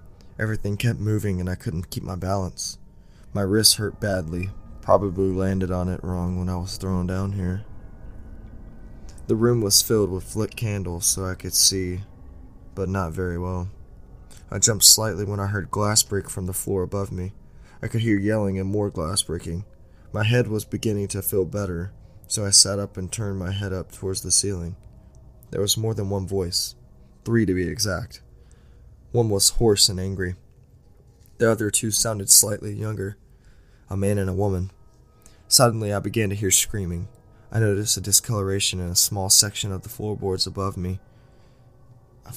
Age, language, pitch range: 20-39, English, 95-105 Hz